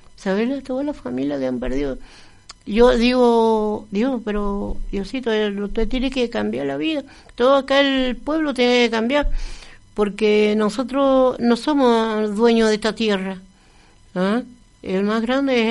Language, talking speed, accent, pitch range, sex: Spanish, 145 wpm, American, 210-250 Hz, female